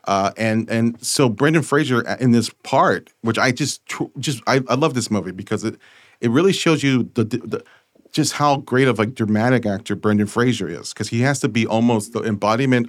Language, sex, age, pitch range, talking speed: English, male, 40-59, 105-125 Hz, 205 wpm